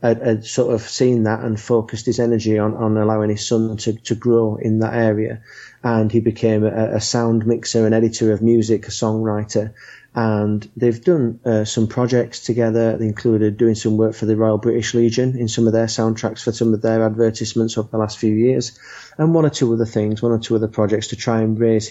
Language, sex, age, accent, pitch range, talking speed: English, male, 30-49, British, 105-115 Hz, 220 wpm